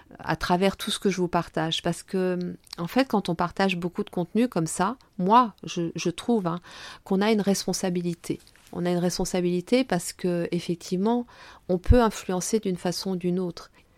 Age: 50-69